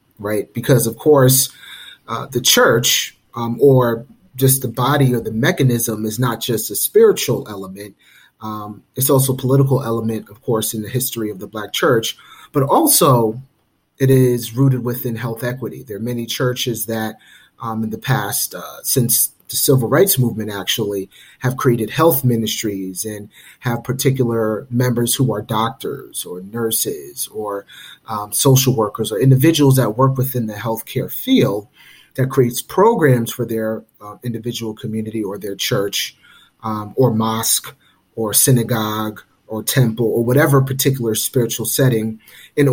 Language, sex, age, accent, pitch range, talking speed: English, male, 30-49, American, 110-130 Hz, 155 wpm